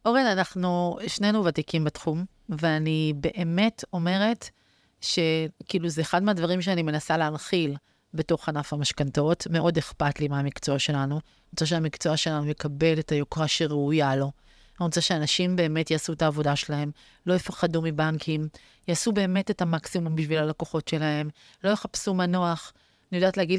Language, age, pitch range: Hebrew, 30-49, 160-230 Hz